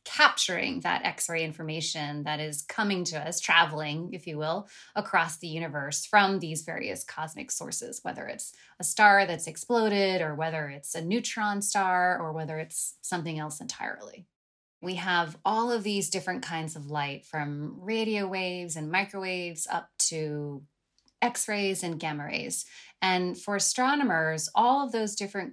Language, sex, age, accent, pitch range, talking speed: English, female, 20-39, American, 160-195 Hz, 155 wpm